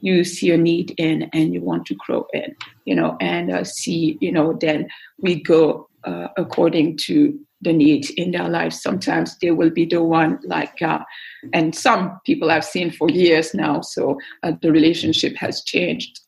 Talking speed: 190 wpm